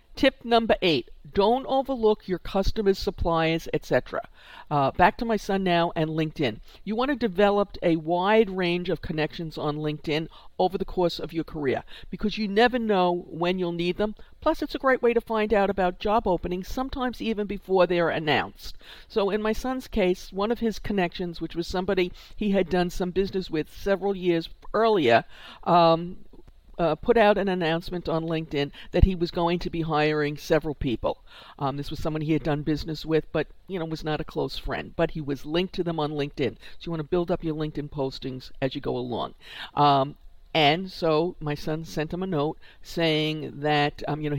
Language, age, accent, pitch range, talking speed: English, 50-69, American, 155-195 Hz, 200 wpm